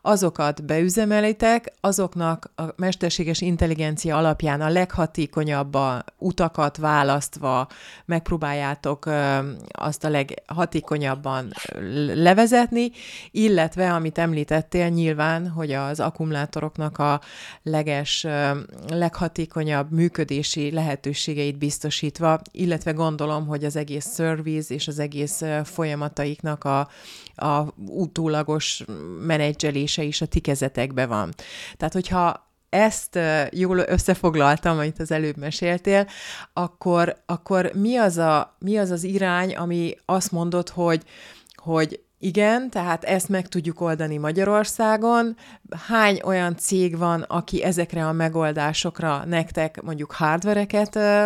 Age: 30-49